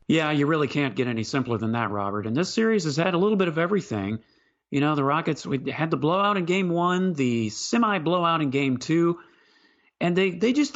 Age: 40-59